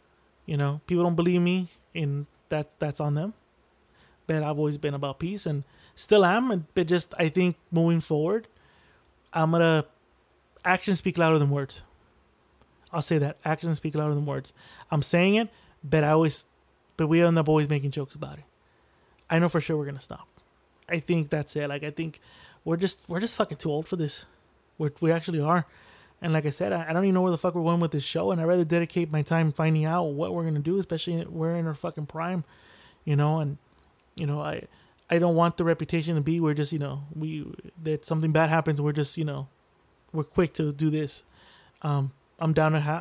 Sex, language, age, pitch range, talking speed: male, English, 20-39, 150-170 Hz, 215 wpm